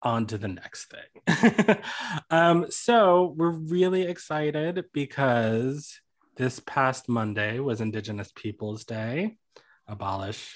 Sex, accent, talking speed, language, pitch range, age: male, American, 110 wpm, English, 115-175 Hz, 20-39